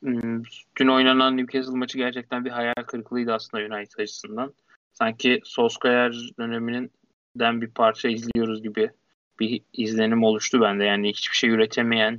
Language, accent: Turkish, native